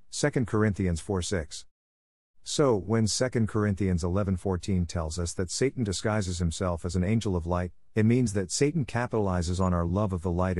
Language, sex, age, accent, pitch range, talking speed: English, male, 50-69, American, 90-115 Hz, 180 wpm